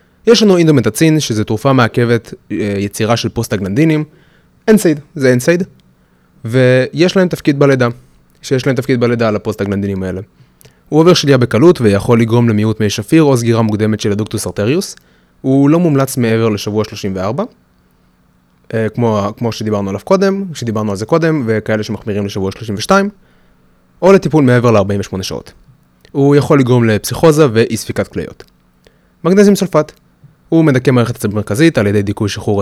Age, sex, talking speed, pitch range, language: 20-39, male, 145 wpm, 105-140 Hz, Hebrew